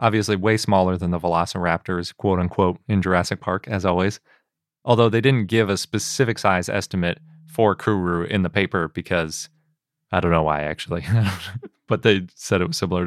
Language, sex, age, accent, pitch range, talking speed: English, male, 30-49, American, 90-110 Hz, 170 wpm